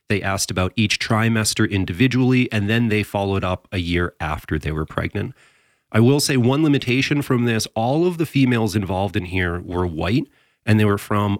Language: English